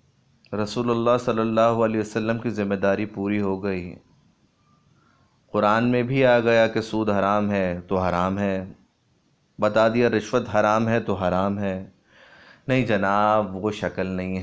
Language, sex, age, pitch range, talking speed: Urdu, male, 30-49, 95-120 Hz, 155 wpm